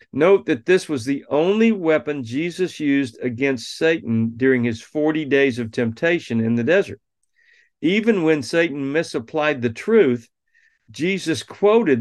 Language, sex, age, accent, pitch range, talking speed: English, male, 50-69, American, 115-155 Hz, 140 wpm